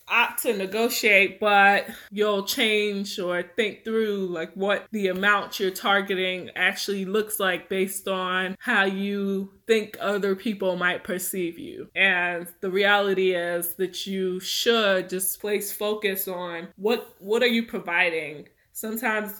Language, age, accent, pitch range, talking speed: English, 20-39, American, 185-220 Hz, 140 wpm